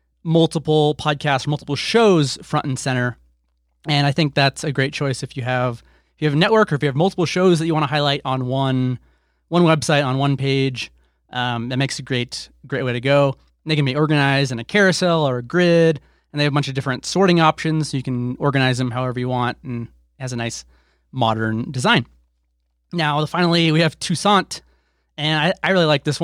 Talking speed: 215 wpm